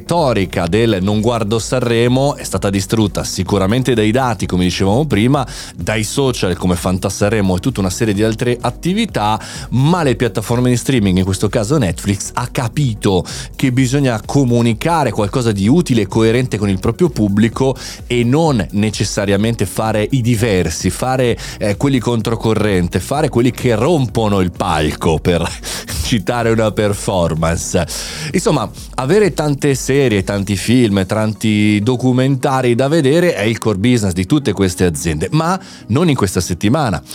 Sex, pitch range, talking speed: male, 100-130 Hz, 145 wpm